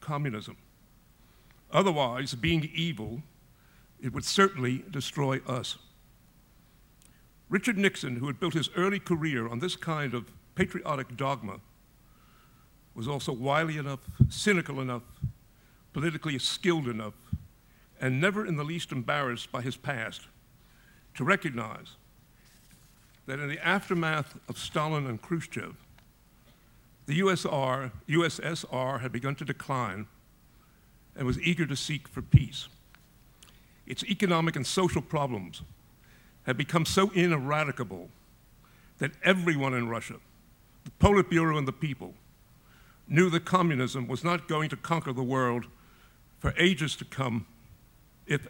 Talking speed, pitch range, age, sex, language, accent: 120 wpm, 125-165 Hz, 60-79, male, English, American